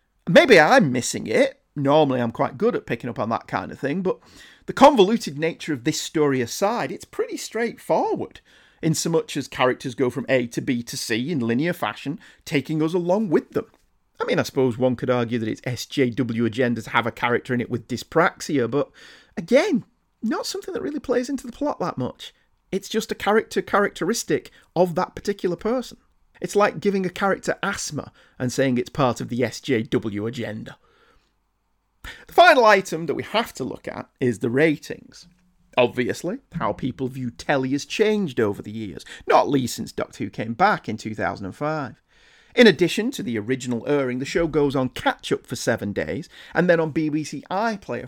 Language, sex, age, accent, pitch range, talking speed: English, male, 40-59, British, 125-200 Hz, 185 wpm